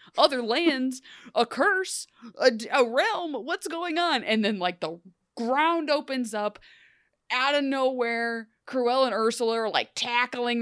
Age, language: 20-39, English